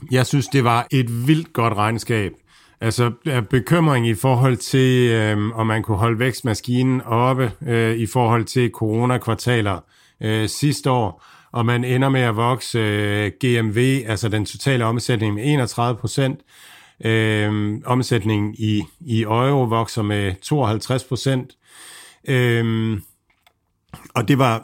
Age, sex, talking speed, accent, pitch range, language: 50-69, male, 135 wpm, native, 110-130 Hz, Danish